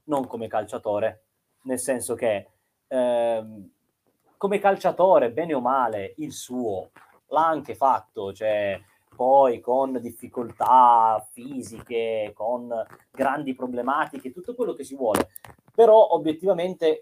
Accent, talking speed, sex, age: native, 115 wpm, male, 30-49